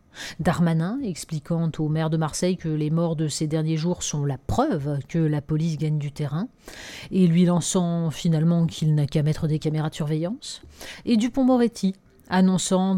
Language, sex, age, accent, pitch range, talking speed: French, female, 40-59, French, 155-195 Hz, 175 wpm